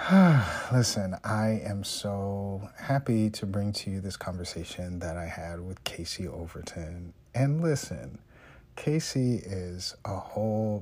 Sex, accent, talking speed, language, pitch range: male, American, 130 wpm, English, 95-115 Hz